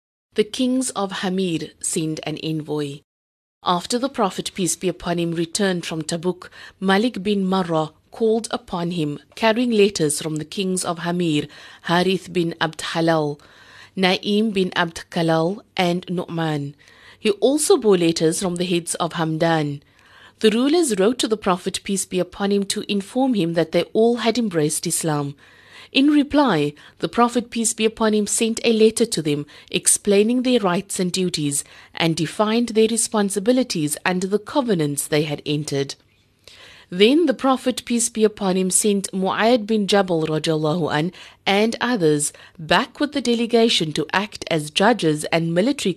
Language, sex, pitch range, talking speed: English, female, 160-215 Hz, 155 wpm